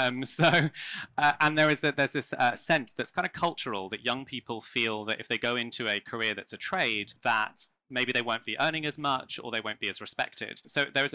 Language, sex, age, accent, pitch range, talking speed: English, male, 20-39, British, 110-140 Hz, 250 wpm